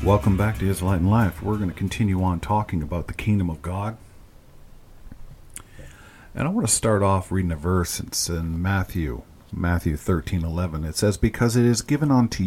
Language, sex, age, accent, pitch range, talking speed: English, male, 50-69, American, 85-110 Hz, 190 wpm